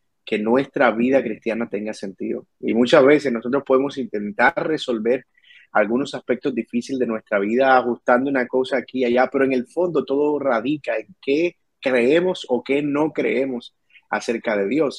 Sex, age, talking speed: male, 30-49, 165 wpm